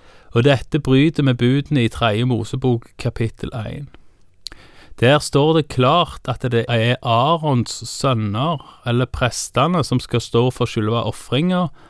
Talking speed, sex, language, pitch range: 135 wpm, male, Danish, 105-140 Hz